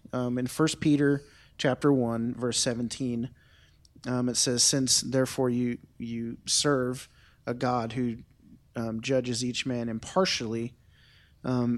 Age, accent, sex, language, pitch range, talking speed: 30-49, American, male, English, 125-150 Hz, 125 wpm